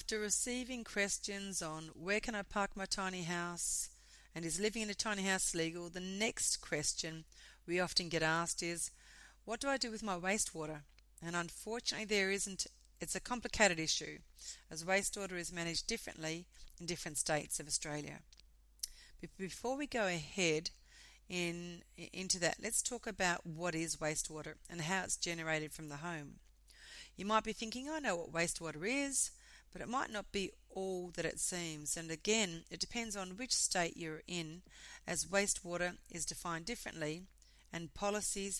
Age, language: 40-59, English